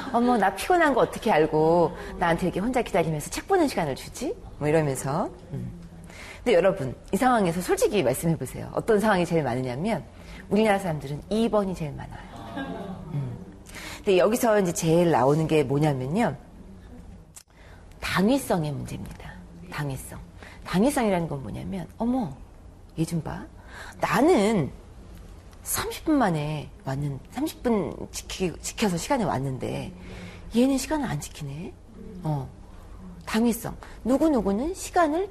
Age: 40-59